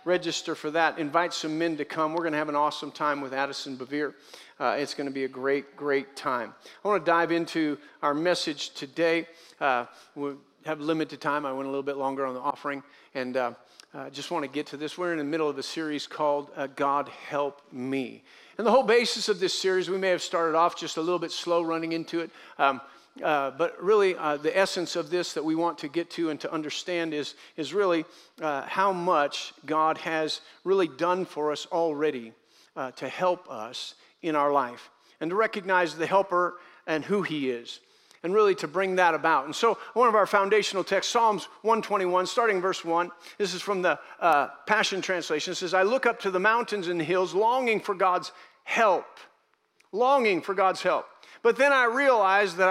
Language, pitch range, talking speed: English, 150-195 Hz, 210 wpm